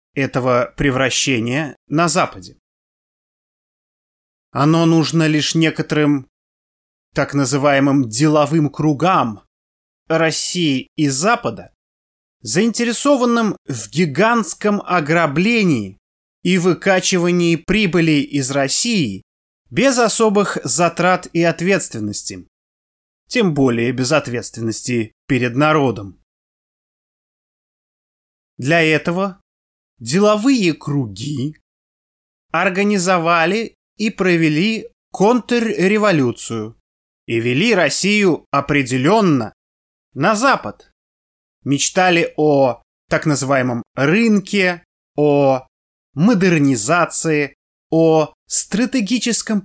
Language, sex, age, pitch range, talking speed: Russian, male, 20-39, 120-185 Hz, 70 wpm